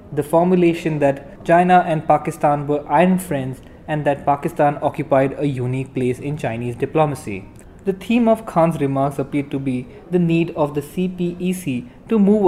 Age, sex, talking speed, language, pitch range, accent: 20-39, male, 165 wpm, English, 140-170 Hz, Indian